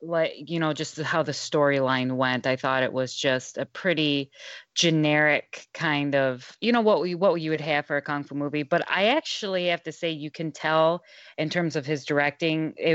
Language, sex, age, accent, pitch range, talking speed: English, female, 20-39, American, 140-165 Hz, 220 wpm